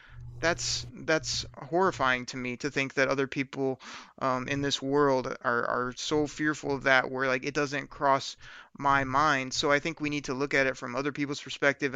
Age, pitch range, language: 30-49, 130-145 Hz, English